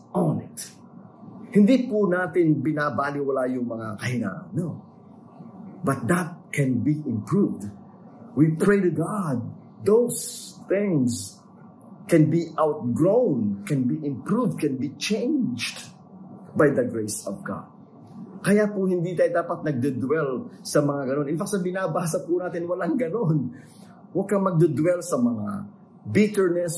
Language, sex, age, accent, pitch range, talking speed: English, male, 50-69, Filipino, 160-205 Hz, 125 wpm